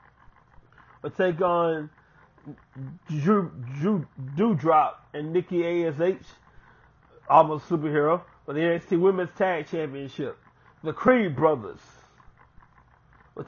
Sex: male